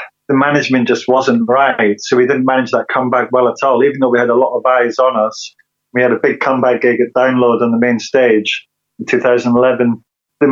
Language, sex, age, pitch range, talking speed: English, male, 20-39, 120-135 Hz, 220 wpm